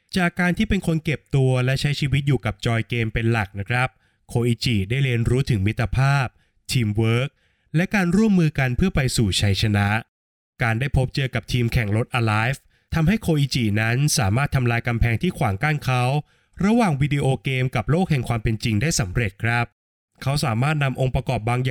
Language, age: Thai, 20-39